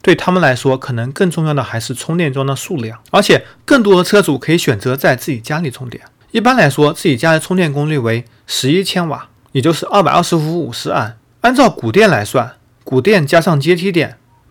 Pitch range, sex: 125-175 Hz, male